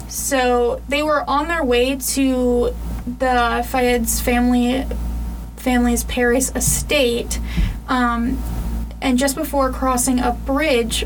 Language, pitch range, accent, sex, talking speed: English, 240-265 Hz, American, female, 110 wpm